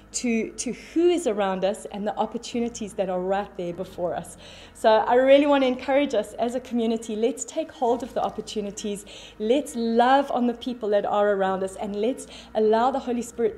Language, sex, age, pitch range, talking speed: English, female, 30-49, 205-265 Hz, 200 wpm